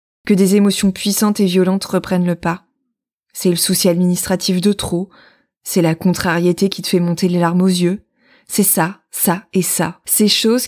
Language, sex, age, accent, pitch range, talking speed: French, female, 20-39, French, 180-210 Hz, 185 wpm